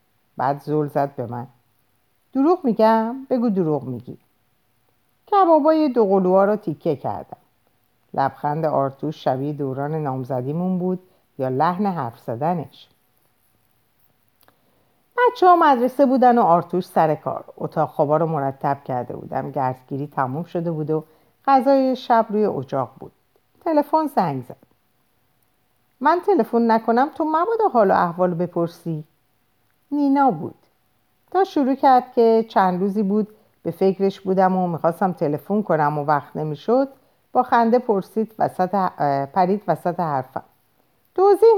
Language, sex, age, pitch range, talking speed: Persian, female, 50-69, 150-245 Hz, 130 wpm